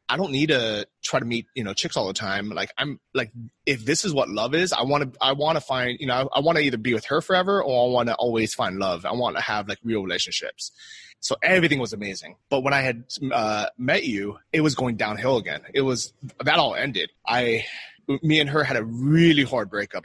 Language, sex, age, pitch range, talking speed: English, male, 20-39, 110-145 Hz, 250 wpm